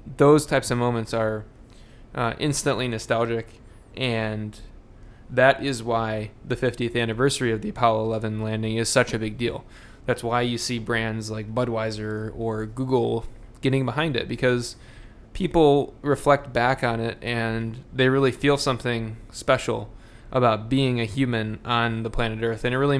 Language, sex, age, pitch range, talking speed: English, male, 20-39, 110-130 Hz, 155 wpm